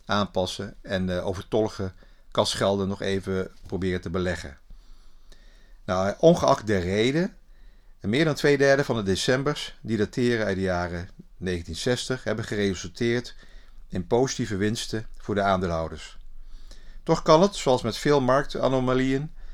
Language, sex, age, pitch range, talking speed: Dutch, male, 50-69, 100-130 Hz, 130 wpm